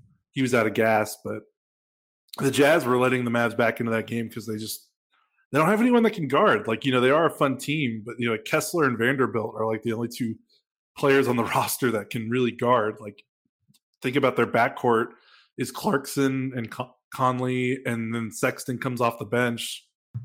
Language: English